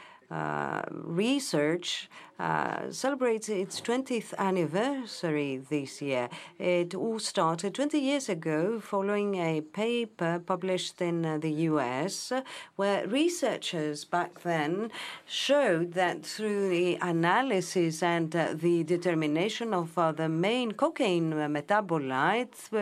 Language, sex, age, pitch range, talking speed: Greek, female, 50-69, 160-210 Hz, 110 wpm